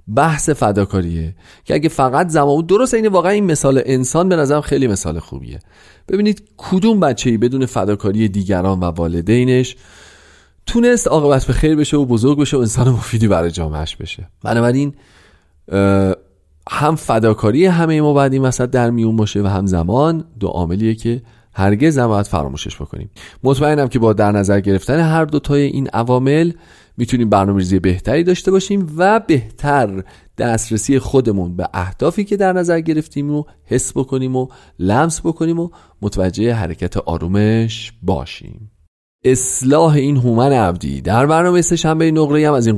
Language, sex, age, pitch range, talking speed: Persian, male, 40-59, 100-150 Hz, 155 wpm